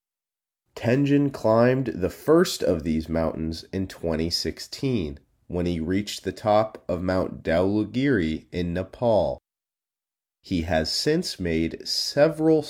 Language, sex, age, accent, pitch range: Chinese, male, 30-49, American, 85-125 Hz